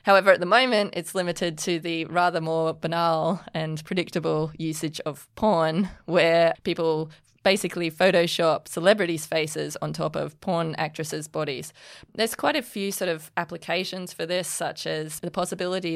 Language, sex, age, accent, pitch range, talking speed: English, female, 20-39, Australian, 160-190 Hz, 155 wpm